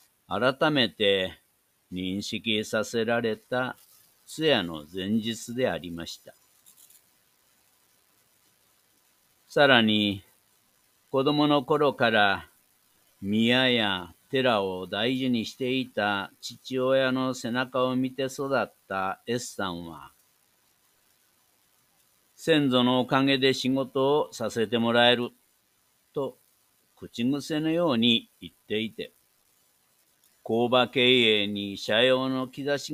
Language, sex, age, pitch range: Japanese, male, 60-79, 110-130 Hz